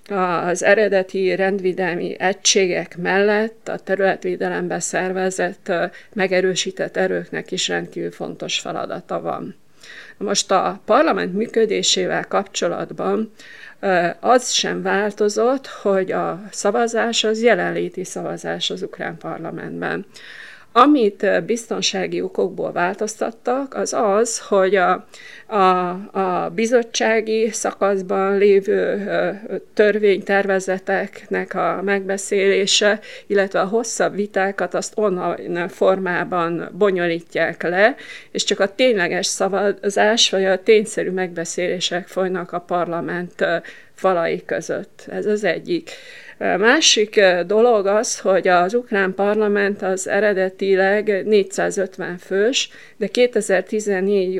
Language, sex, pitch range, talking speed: Hungarian, female, 185-215 Hz, 95 wpm